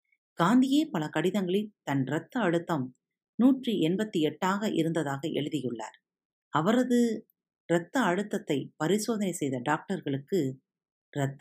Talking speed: 95 wpm